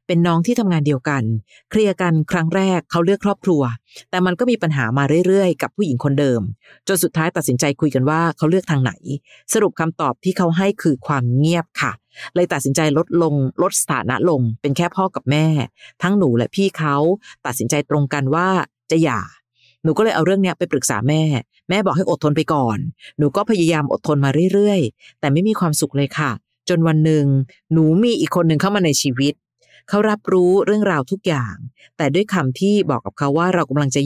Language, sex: Thai, female